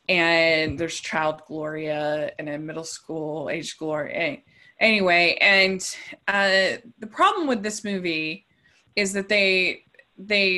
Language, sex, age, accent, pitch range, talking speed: English, female, 20-39, American, 155-190 Hz, 125 wpm